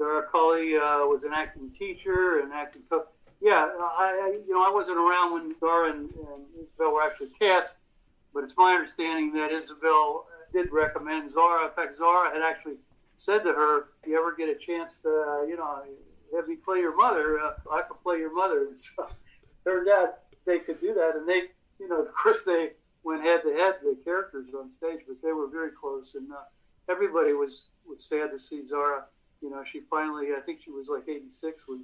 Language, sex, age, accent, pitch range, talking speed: English, male, 60-79, American, 150-185 Hz, 205 wpm